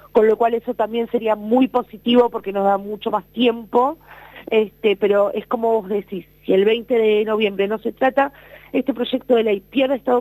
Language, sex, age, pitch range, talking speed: Spanish, female, 40-59, 200-230 Hz, 200 wpm